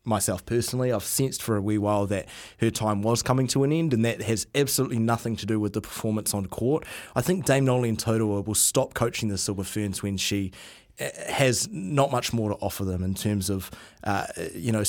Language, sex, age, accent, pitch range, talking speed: English, male, 20-39, Australian, 100-120 Hz, 220 wpm